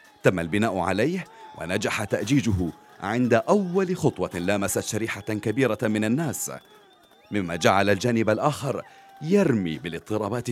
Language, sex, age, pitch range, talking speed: Arabic, male, 40-59, 105-145 Hz, 110 wpm